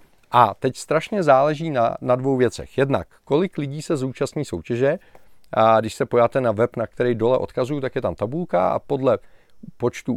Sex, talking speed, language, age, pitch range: male, 185 wpm, Czech, 40-59, 110-140 Hz